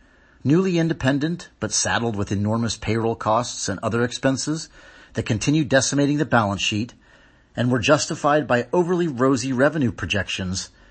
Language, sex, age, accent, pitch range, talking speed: English, male, 40-59, American, 105-135 Hz, 140 wpm